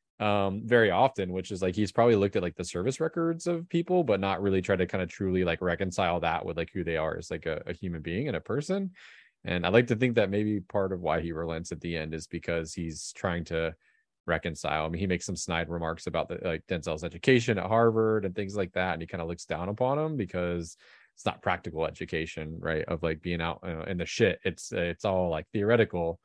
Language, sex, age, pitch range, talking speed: English, male, 20-39, 85-105 Hz, 250 wpm